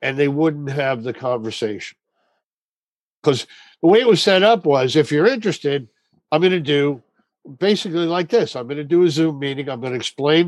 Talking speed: 200 wpm